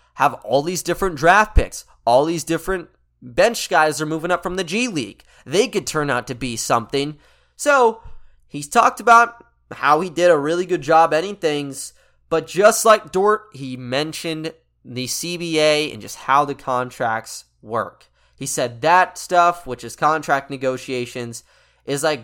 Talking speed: 165 wpm